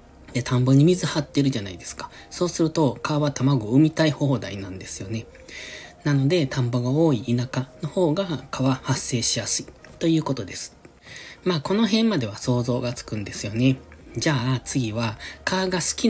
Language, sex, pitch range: Japanese, male, 105-145 Hz